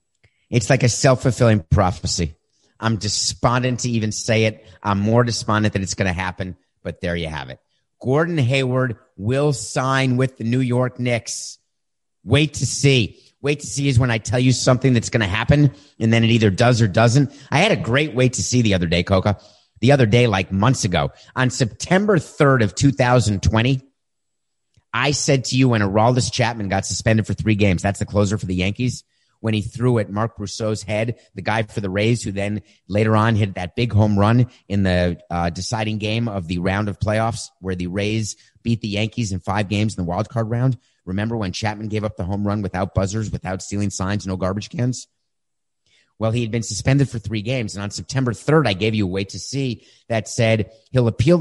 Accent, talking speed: American, 210 wpm